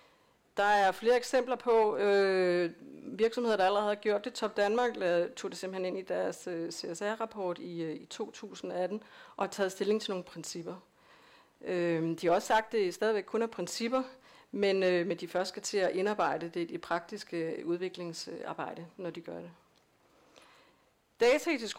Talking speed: 170 wpm